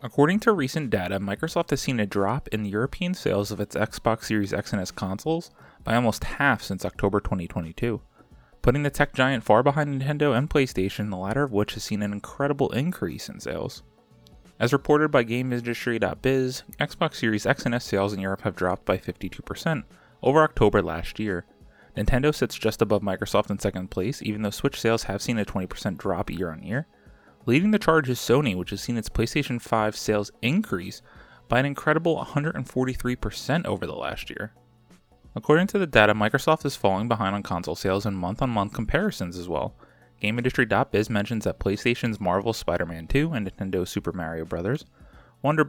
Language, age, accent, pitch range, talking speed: English, 20-39, American, 100-135 Hz, 180 wpm